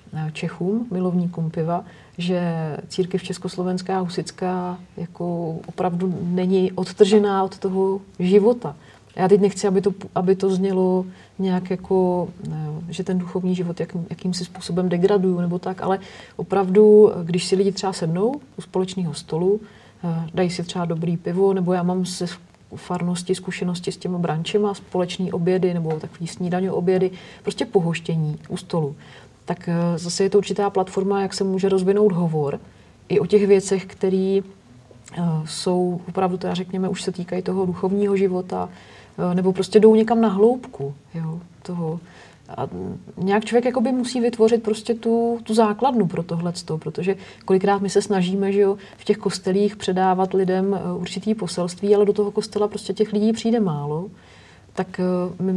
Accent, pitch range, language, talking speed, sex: native, 175-200 Hz, Czech, 150 wpm, female